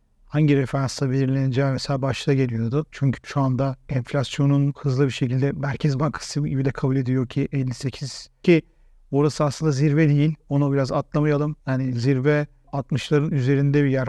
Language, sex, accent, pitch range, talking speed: Turkish, male, native, 135-150 Hz, 150 wpm